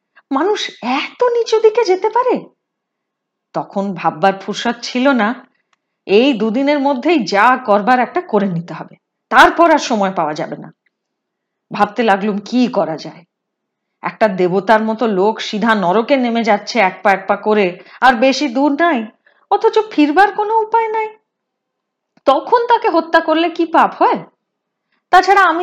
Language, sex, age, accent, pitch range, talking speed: Hindi, female, 30-49, native, 210-335 Hz, 35 wpm